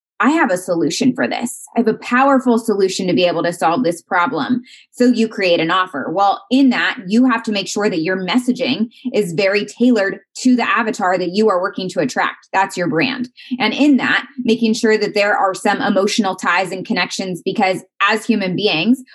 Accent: American